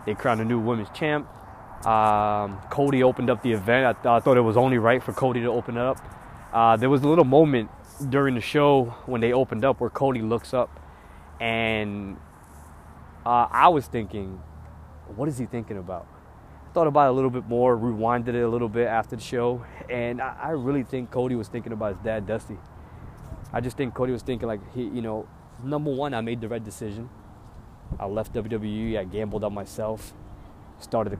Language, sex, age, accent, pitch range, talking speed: English, male, 20-39, American, 105-125 Hz, 205 wpm